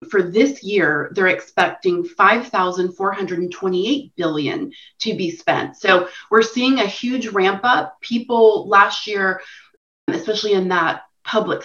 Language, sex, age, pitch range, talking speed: English, female, 30-49, 180-220 Hz, 125 wpm